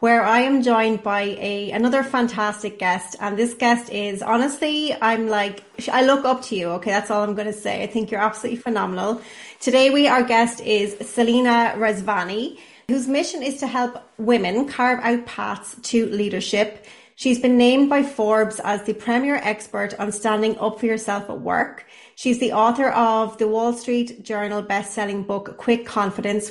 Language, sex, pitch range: English, female, 205-245 Hz